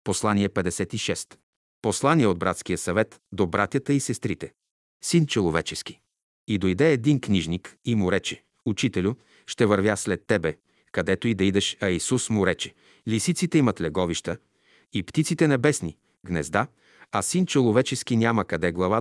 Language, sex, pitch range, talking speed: Bulgarian, male, 95-125 Hz, 140 wpm